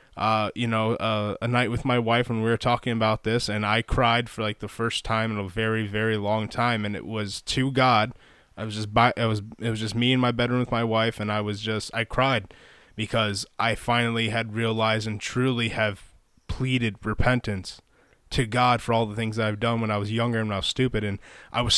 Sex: male